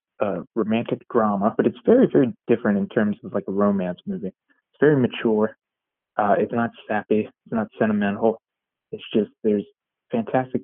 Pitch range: 100-115 Hz